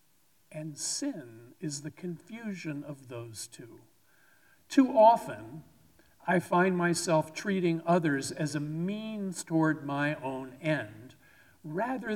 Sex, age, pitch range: male, 50-69, 145-195 Hz